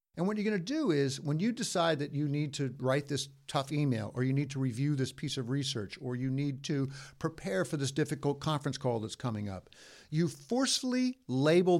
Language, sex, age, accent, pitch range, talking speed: English, male, 50-69, American, 125-165 Hz, 220 wpm